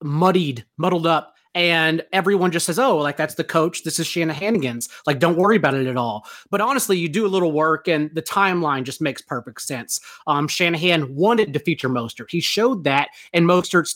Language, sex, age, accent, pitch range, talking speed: English, male, 30-49, American, 155-195 Hz, 205 wpm